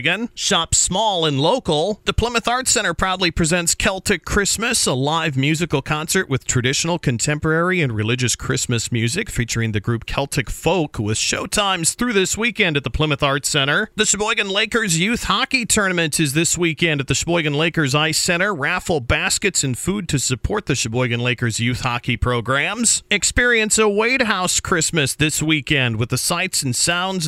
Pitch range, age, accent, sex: 135-190 Hz, 40-59, American, male